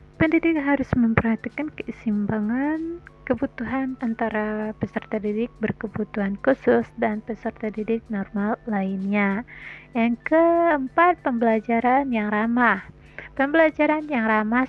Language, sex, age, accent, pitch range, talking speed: Indonesian, female, 30-49, native, 215-265 Hz, 95 wpm